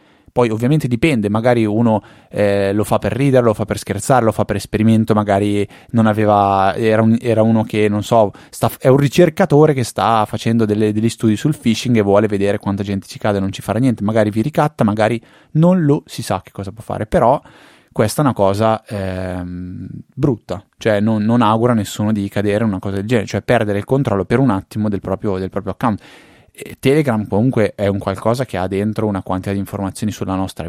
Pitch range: 100-120 Hz